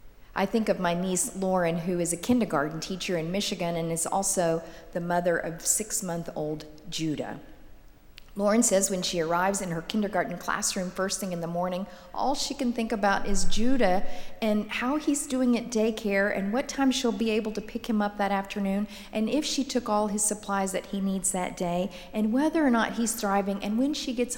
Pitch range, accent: 175-220 Hz, American